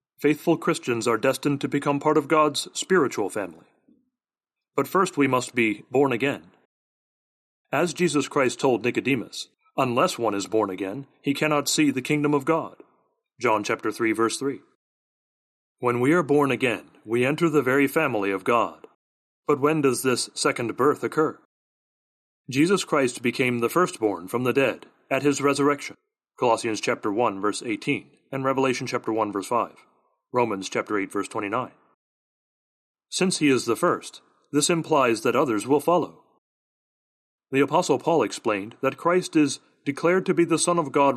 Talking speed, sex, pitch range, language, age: 160 wpm, male, 120-155 Hz, English, 30-49